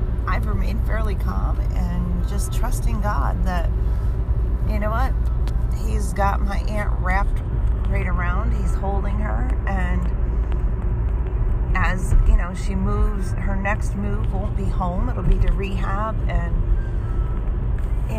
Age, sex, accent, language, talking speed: 40-59, female, American, English, 130 wpm